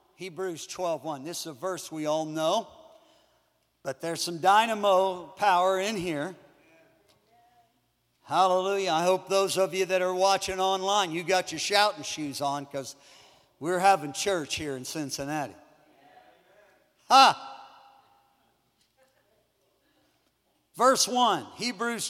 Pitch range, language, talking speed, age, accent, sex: 180-270 Hz, English, 120 wpm, 50-69, American, male